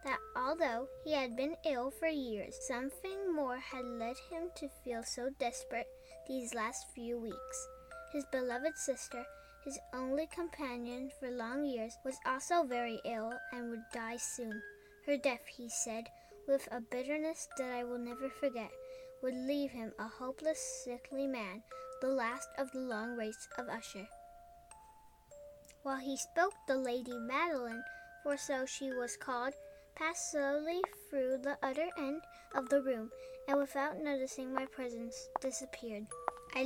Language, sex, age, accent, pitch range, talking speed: English, female, 10-29, American, 240-290 Hz, 150 wpm